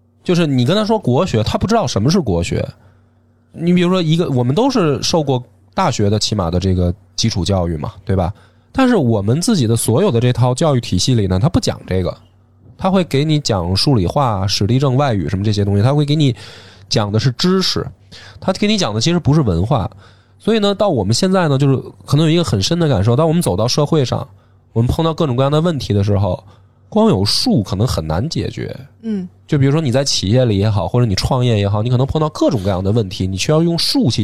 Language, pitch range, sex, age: Chinese, 110-160 Hz, male, 20-39